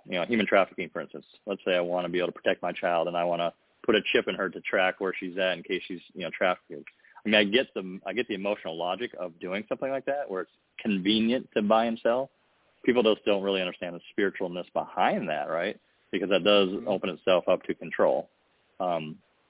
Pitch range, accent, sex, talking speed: 90-100 Hz, American, male, 240 wpm